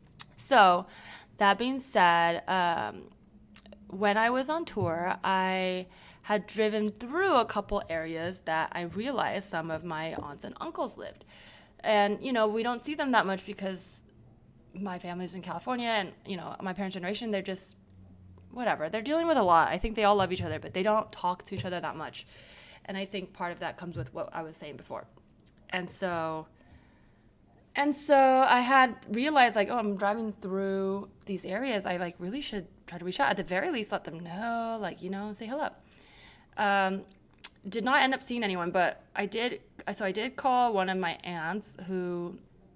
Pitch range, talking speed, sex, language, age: 175-215 Hz, 190 wpm, female, English, 20-39